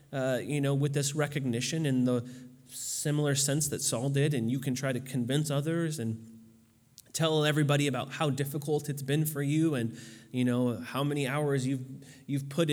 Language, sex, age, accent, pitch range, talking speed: English, male, 30-49, American, 125-145 Hz, 185 wpm